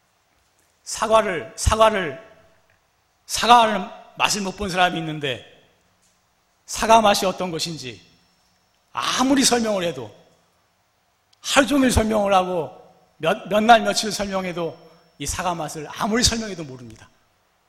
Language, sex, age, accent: Korean, male, 40-59, native